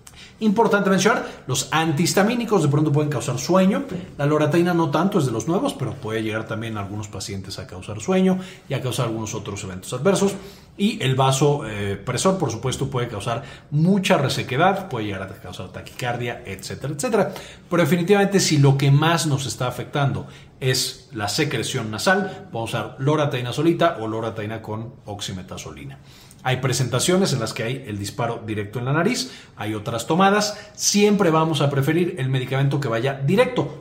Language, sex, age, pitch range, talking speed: Spanish, male, 40-59, 110-170 Hz, 170 wpm